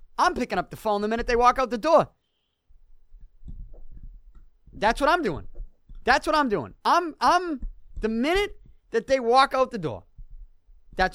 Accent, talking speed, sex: American, 165 wpm, male